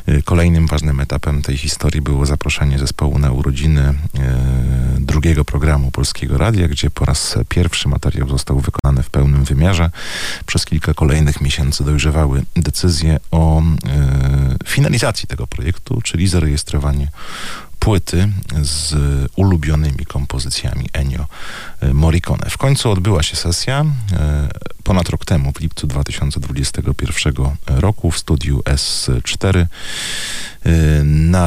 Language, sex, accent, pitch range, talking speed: Polish, male, native, 70-90 Hz, 110 wpm